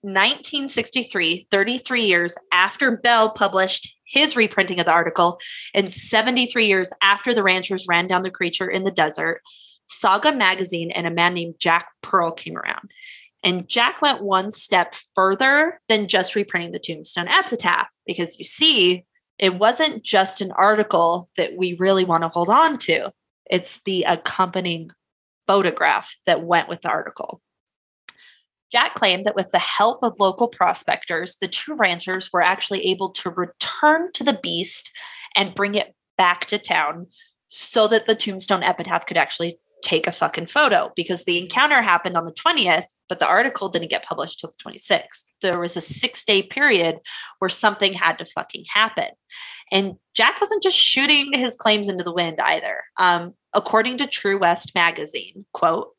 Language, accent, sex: English, American, female